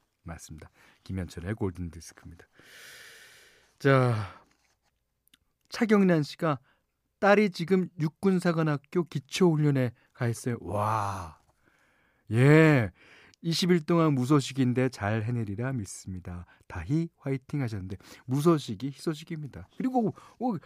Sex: male